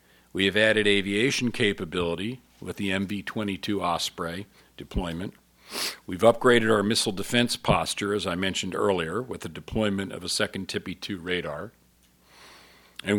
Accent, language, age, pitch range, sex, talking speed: American, English, 50-69, 85-110 Hz, male, 130 wpm